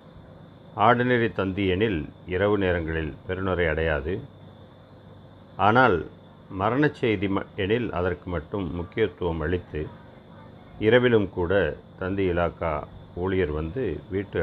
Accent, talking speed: native, 80 wpm